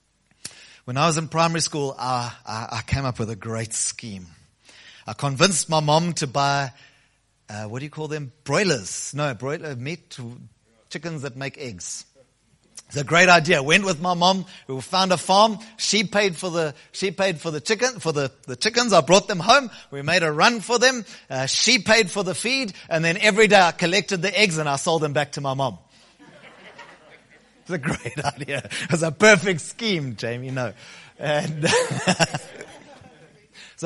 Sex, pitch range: male, 125-170 Hz